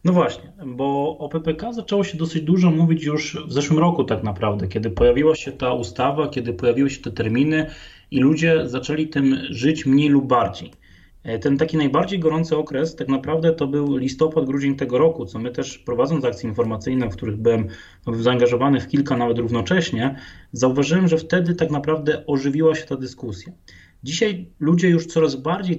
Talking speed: 175 wpm